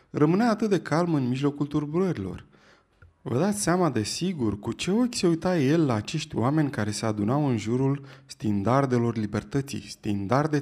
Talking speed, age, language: 165 wpm, 20-39, Romanian